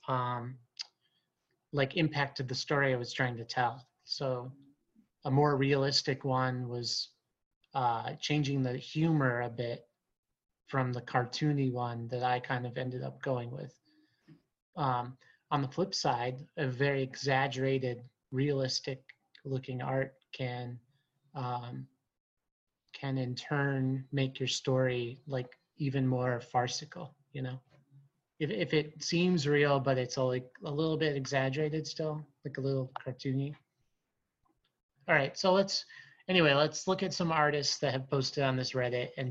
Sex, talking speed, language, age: male, 140 wpm, English, 30-49